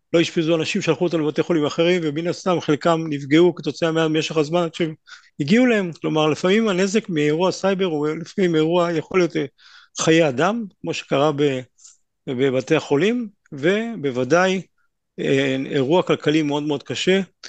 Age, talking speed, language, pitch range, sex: 50-69, 140 wpm, English, 150-195 Hz, male